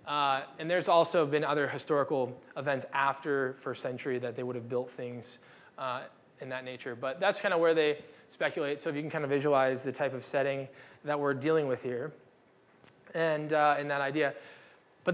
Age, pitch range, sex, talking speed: 20-39, 135-175 Hz, male, 200 wpm